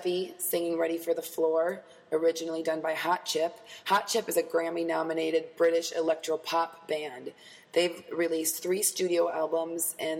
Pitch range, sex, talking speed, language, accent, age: 160-185 Hz, female, 145 wpm, English, American, 20-39